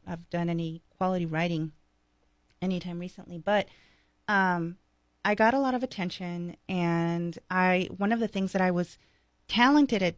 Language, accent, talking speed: English, American, 155 wpm